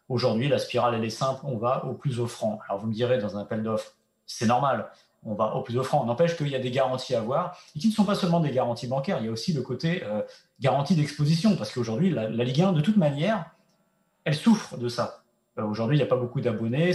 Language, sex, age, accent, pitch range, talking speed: French, male, 30-49, French, 120-175 Hz, 260 wpm